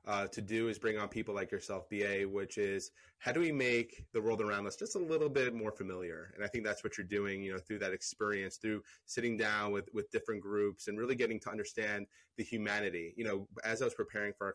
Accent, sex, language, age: American, male, English, 30-49